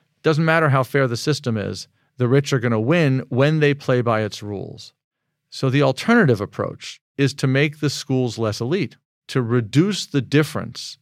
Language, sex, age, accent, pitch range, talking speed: English, male, 50-69, American, 120-150 Hz, 185 wpm